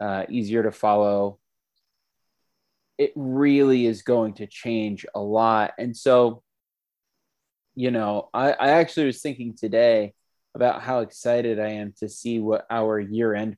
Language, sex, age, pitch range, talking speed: English, male, 20-39, 105-125 Hz, 140 wpm